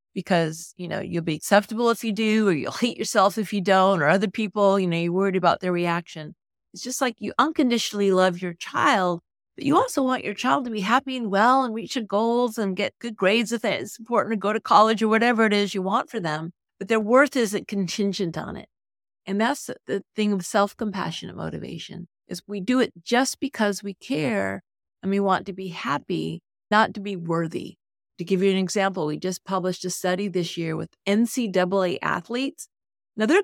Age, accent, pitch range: 50-69, American, 185-240 Hz